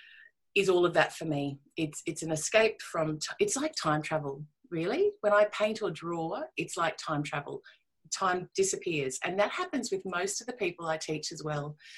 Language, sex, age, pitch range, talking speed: English, female, 30-49, 155-220 Hz, 200 wpm